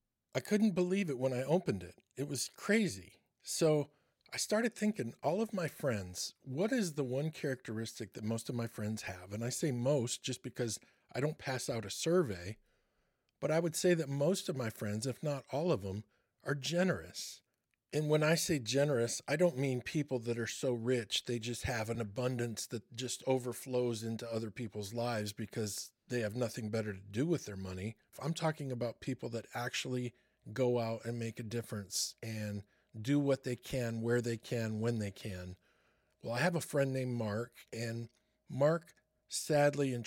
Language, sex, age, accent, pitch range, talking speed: English, male, 50-69, American, 115-140 Hz, 190 wpm